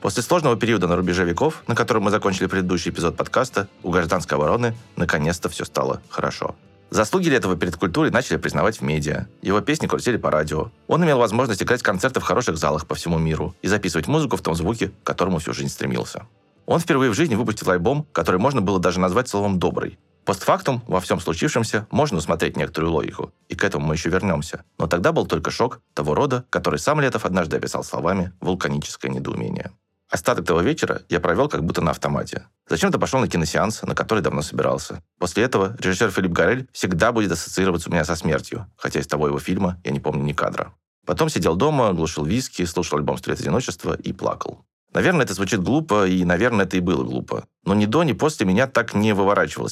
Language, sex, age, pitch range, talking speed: Russian, male, 30-49, 80-100 Hz, 205 wpm